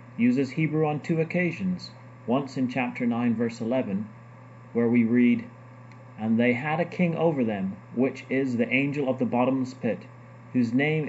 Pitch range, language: 120-165 Hz, English